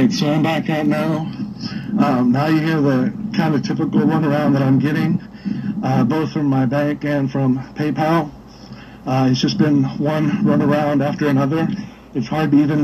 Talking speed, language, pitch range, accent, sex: 180 wpm, English, 140-160 Hz, American, male